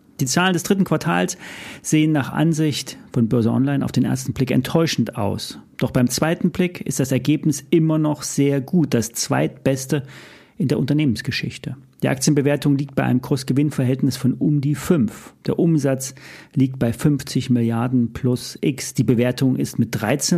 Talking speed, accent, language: 165 wpm, German, German